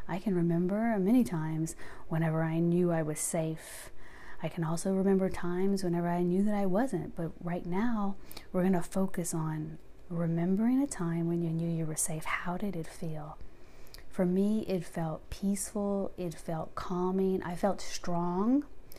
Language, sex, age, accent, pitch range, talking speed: English, female, 30-49, American, 170-195 Hz, 170 wpm